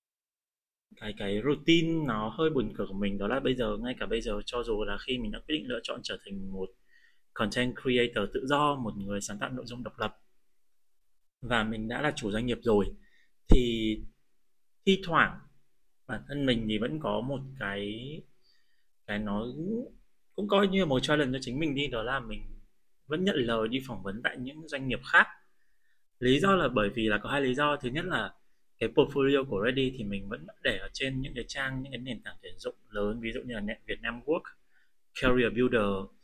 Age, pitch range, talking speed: 20-39, 105-140 Hz, 210 wpm